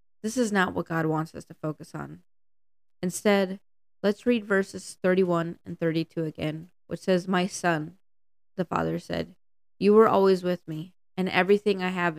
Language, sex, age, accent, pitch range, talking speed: English, female, 20-39, American, 165-200 Hz, 165 wpm